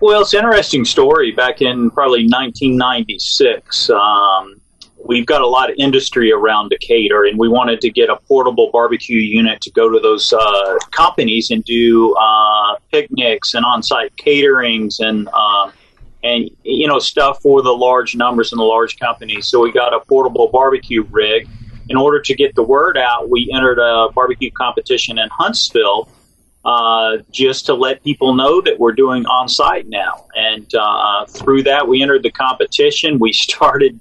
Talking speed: 175 wpm